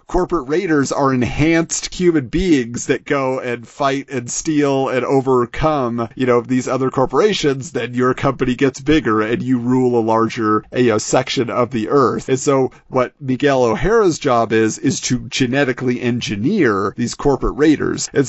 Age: 40-59